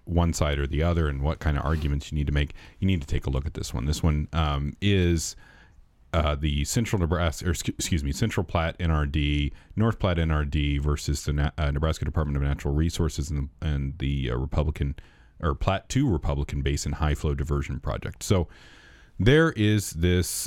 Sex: male